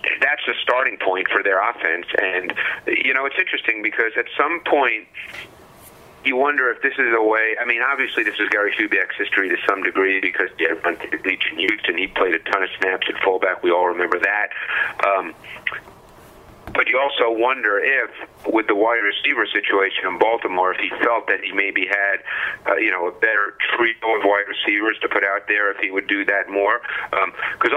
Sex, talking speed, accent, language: male, 195 wpm, American, English